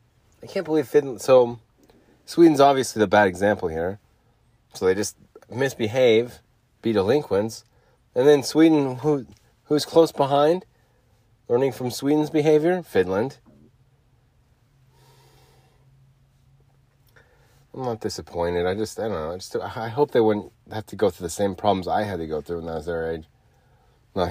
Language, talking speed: English, 150 wpm